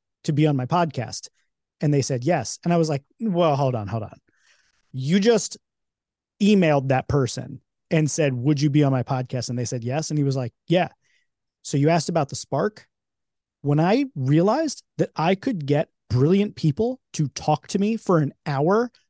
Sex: male